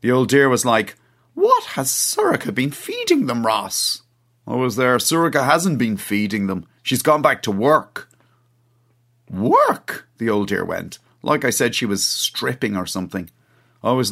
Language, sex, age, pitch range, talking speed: English, male, 30-49, 110-140 Hz, 170 wpm